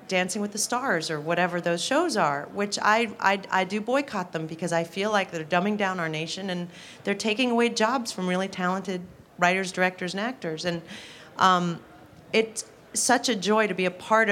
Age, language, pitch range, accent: 40-59, English, 175-235 Hz, American